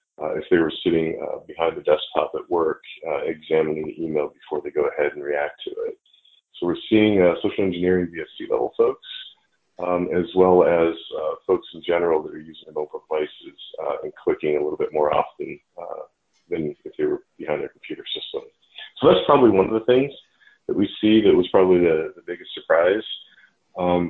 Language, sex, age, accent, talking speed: English, male, 40-59, American, 200 wpm